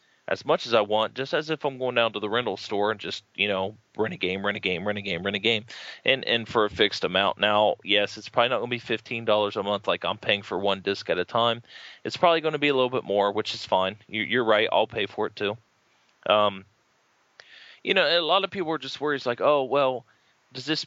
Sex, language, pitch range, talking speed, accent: male, English, 105-145 Hz, 265 wpm, American